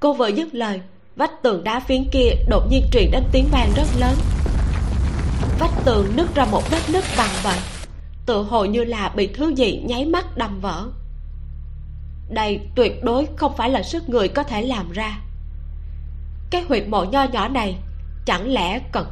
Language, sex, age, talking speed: Vietnamese, female, 20-39, 180 wpm